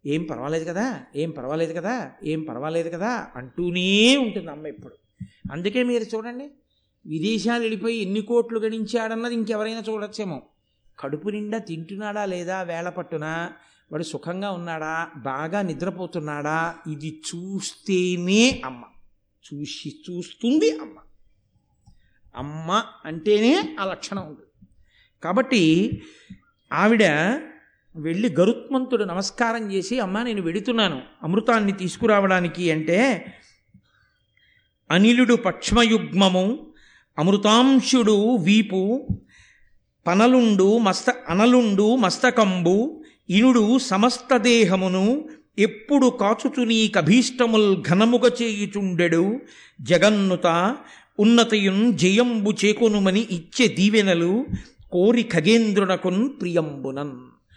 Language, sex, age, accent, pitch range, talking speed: Telugu, male, 50-69, native, 170-230 Hz, 85 wpm